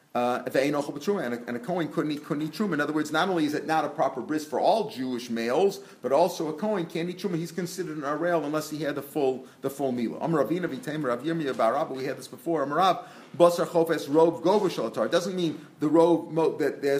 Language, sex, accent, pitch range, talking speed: English, male, American, 130-170 Hz, 185 wpm